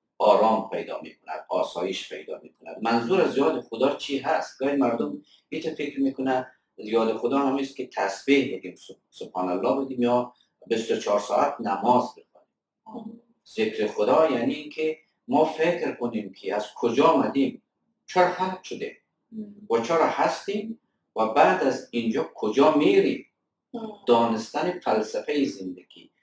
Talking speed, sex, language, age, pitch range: 135 wpm, male, Persian, 50-69, 120-195 Hz